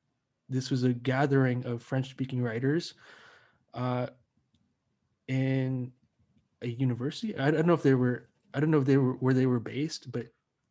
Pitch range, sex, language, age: 125-145 Hz, male, English, 20-39